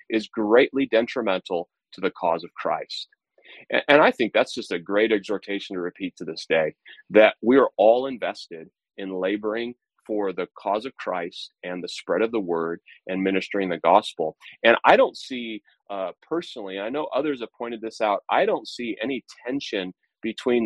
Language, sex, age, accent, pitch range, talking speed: English, male, 30-49, American, 100-125 Hz, 180 wpm